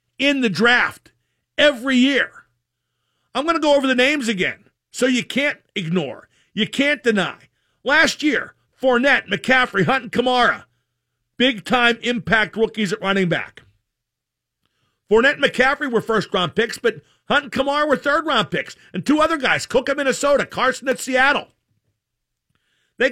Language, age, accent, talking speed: English, 50-69, American, 155 wpm